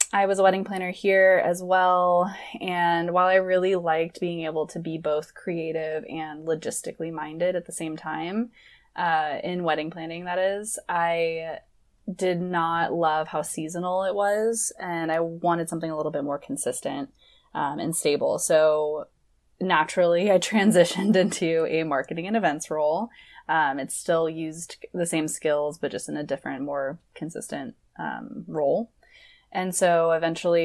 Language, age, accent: English, 20-39, American